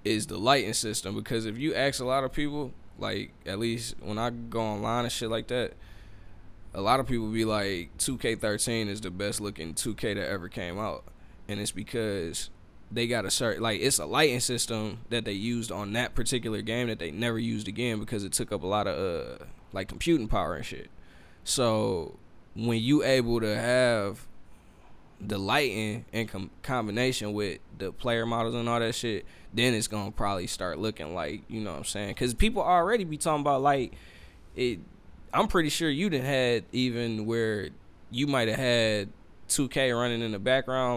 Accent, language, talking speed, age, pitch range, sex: American, English, 195 wpm, 10-29, 100-125 Hz, male